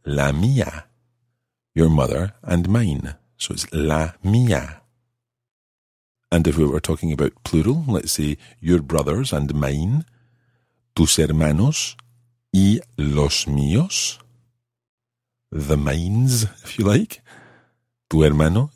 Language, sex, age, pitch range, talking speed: English, male, 50-69, 80-120 Hz, 110 wpm